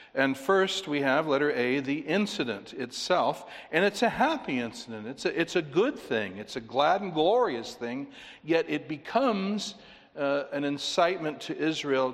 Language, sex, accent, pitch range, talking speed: English, male, American, 120-160 Hz, 165 wpm